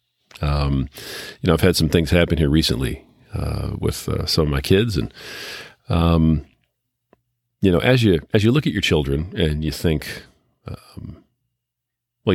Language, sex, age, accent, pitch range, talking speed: English, male, 40-59, American, 75-105 Hz, 165 wpm